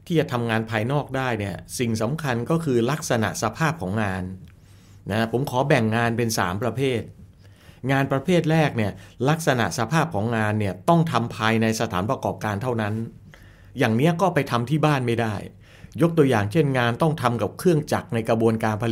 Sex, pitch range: male, 105-140 Hz